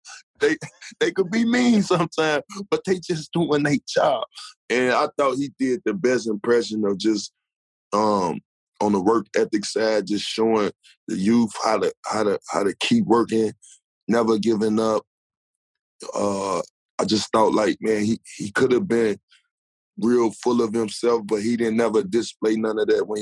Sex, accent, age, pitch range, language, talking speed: male, American, 20-39, 105-125 Hz, English, 175 wpm